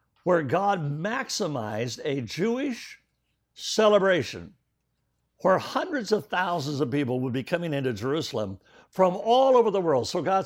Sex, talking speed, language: male, 140 wpm, English